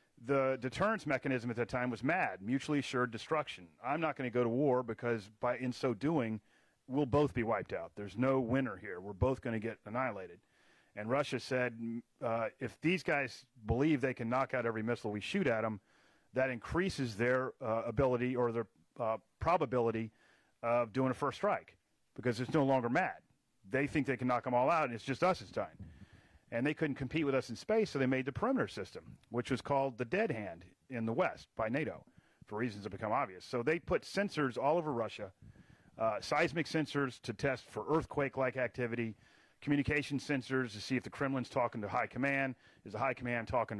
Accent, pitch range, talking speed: American, 115-140 Hz, 205 wpm